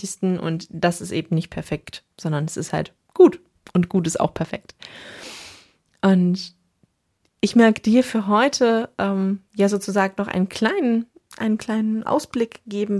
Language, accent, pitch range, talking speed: German, German, 175-210 Hz, 150 wpm